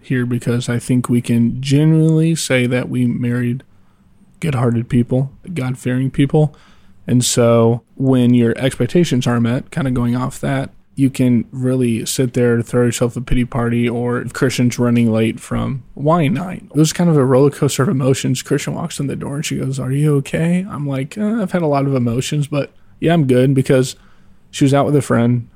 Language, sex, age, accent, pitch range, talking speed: English, male, 20-39, American, 120-140 Hz, 200 wpm